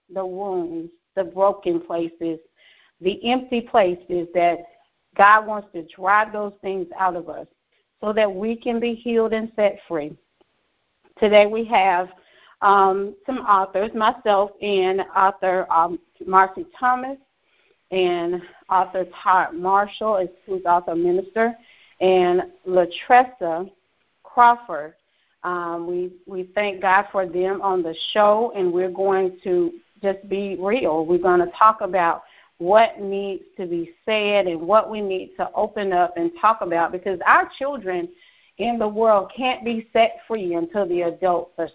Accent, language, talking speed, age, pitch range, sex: American, English, 145 wpm, 40-59, 180-225 Hz, female